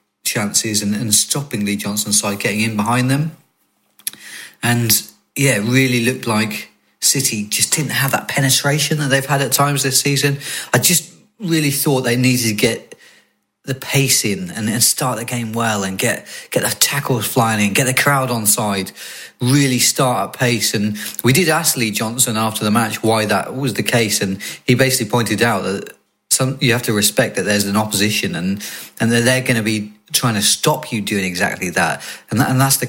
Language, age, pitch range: English, 30-49, 105-130 Hz